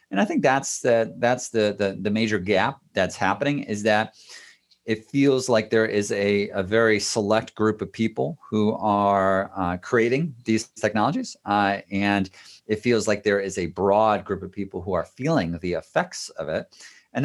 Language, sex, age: English, male, 40-59